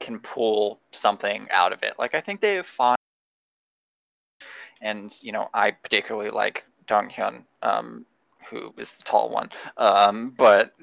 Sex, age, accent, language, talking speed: male, 20-39, American, English, 155 wpm